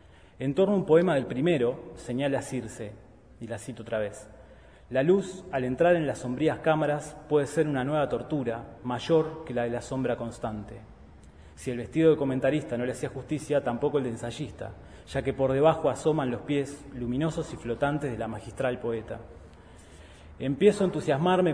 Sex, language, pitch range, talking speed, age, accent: male, Spanish, 120-160 Hz, 180 wpm, 20-39, Argentinian